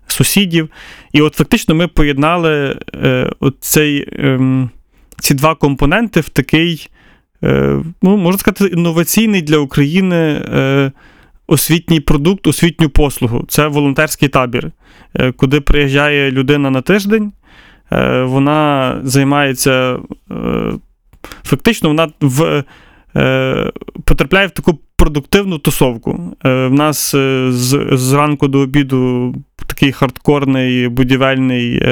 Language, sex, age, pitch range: Ukrainian, male, 30-49, 130-160 Hz